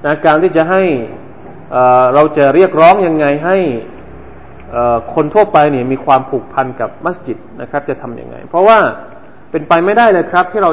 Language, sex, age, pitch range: Thai, male, 20-39, 120-150 Hz